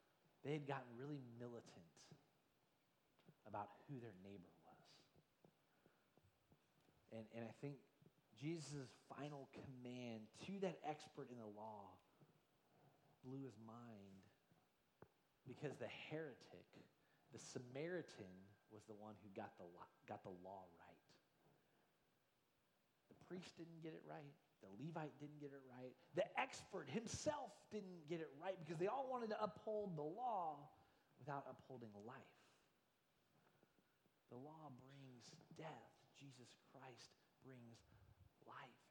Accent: American